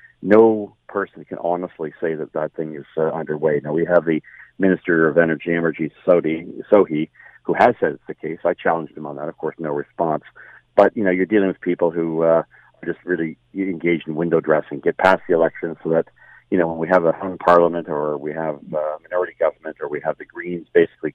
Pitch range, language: 75-85 Hz, English